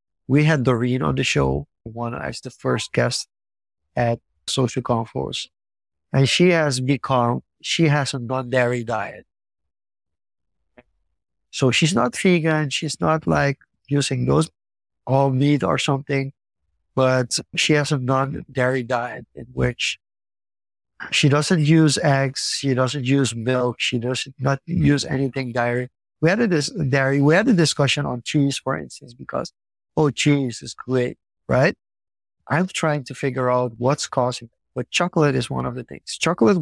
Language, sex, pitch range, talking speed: English, male, 120-150 Hz, 150 wpm